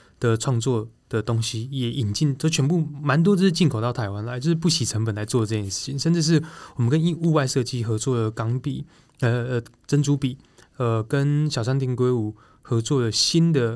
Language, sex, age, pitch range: Chinese, male, 20-39, 115-150 Hz